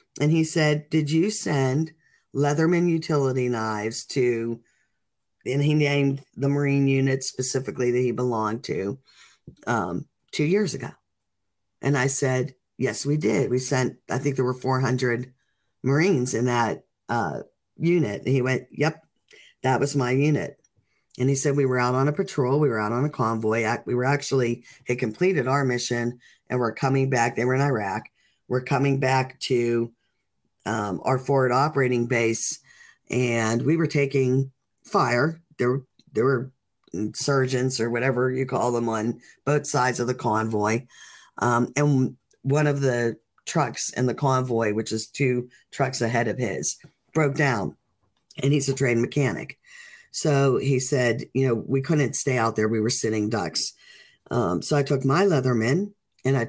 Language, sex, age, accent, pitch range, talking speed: English, female, 40-59, American, 120-145 Hz, 165 wpm